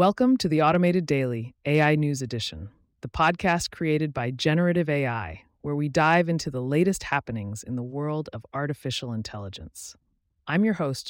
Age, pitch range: 30-49, 120-170 Hz